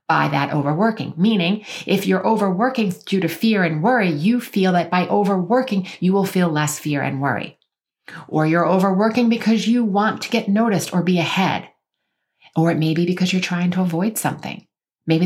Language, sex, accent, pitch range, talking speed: English, female, American, 170-220 Hz, 185 wpm